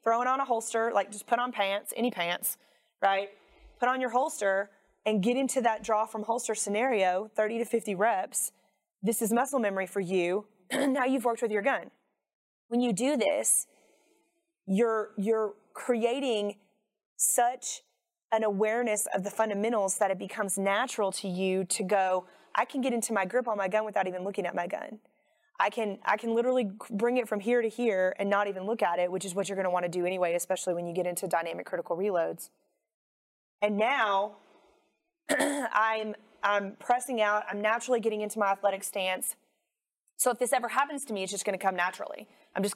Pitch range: 195-240 Hz